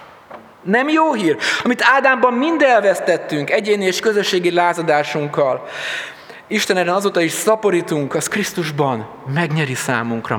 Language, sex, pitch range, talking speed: Hungarian, male, 145-215 Hz, 110 wpm